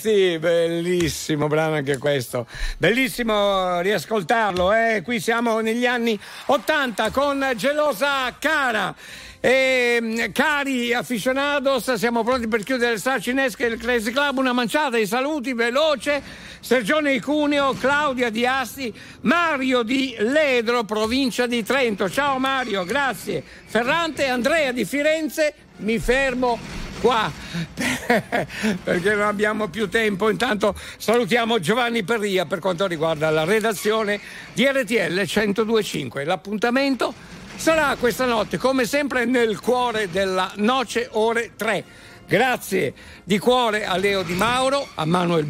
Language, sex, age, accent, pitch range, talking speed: Italian, male, 60-79, native, 205-260 Hz, 125 wpm